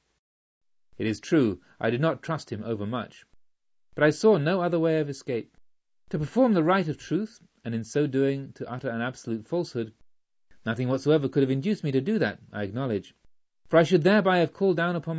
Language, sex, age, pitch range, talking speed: English, male, 40-59, 115-160 Hz, 200 wpm